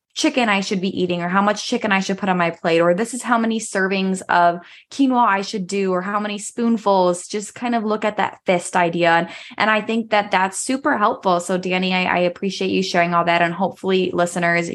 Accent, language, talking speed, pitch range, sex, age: American, English, 235 wpm, 165-200 Hz, female, 20-39